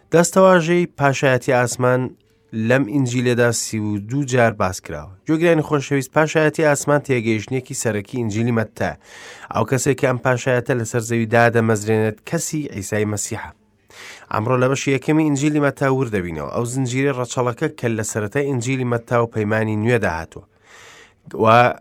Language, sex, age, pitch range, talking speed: English, male, 30-49, 110-140 Hz, 130 wpm